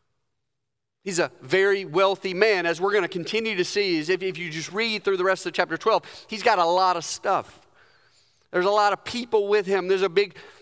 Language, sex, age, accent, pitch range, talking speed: English, male, 40-59, American, 180-225 Hz, 215 wpm